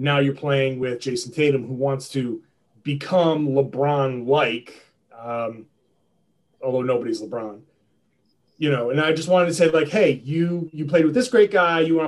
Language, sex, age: English, male, 30-49